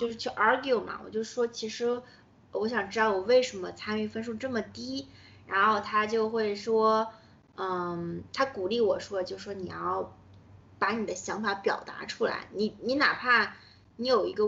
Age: 20-39